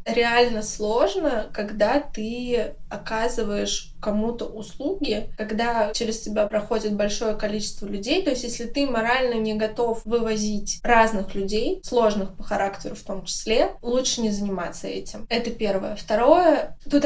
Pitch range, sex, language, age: 205-240 Hz, female, Russian, 20-39